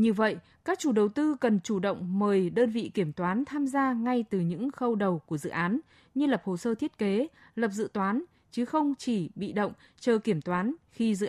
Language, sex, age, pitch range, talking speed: Vietnamese, female, 20-39, 195-260 Hz, 230 wpm